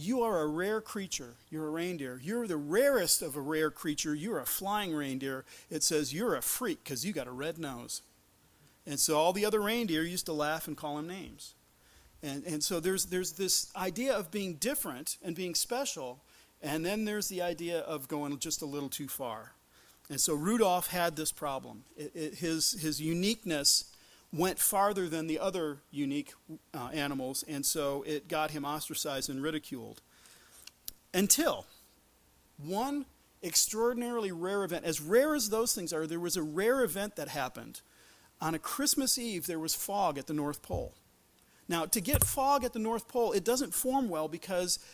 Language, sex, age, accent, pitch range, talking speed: English, male, 40-59, American, 150-210 Hz, 185 wpm